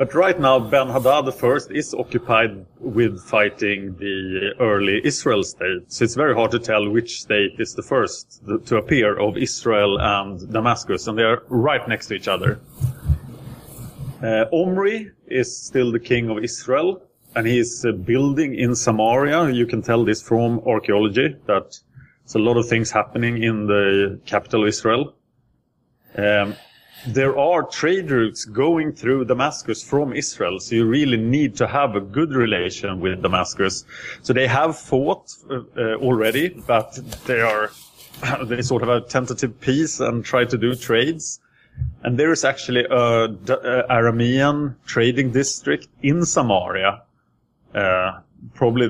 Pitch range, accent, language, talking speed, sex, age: 105-130 Hz, Norwegian, English, 155 wpm, male, 30-49